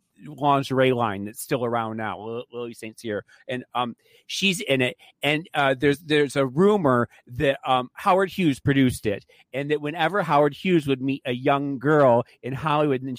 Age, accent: 40-59, American